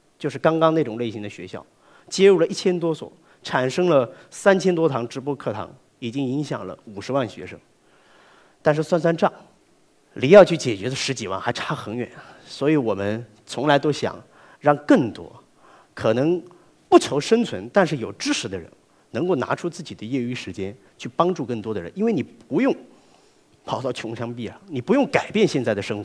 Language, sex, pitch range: Chinese, male, 125-195 Hz